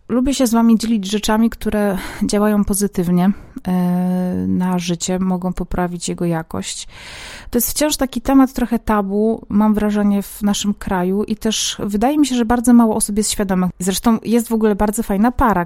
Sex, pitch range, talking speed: female, 185-225 Hz, 175 wpm